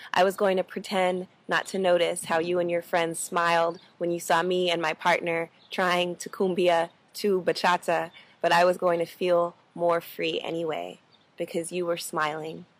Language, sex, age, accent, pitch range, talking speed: English, female, 20-39, American, 165-180 Hz, 185 wpm